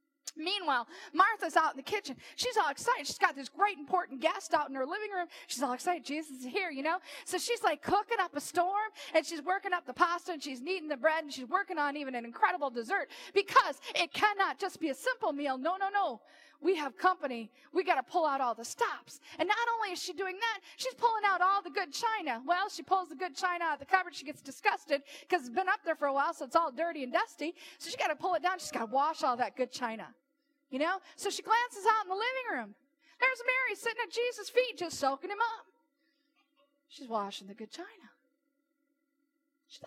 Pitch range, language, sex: 285-390 Hz, English, female